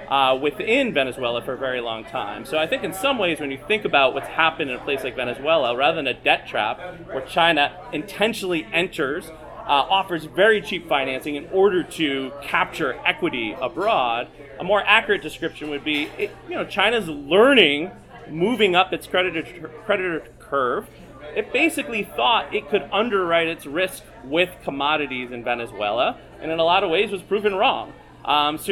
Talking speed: 175 wpm